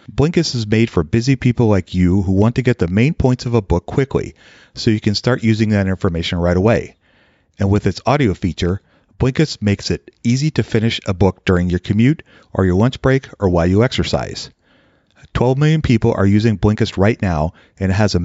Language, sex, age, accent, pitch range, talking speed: English, male, 40-59, American, 95-120 Hz, 210 wpm